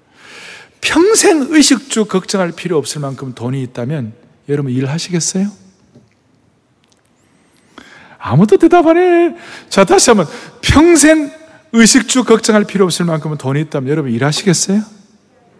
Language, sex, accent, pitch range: Korean, male, native, 130-190 Hz